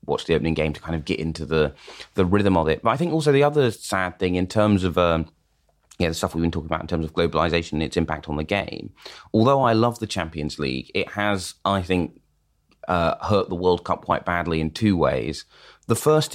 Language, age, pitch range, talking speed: English, 30-49, 80-95 Hz, 240 wpm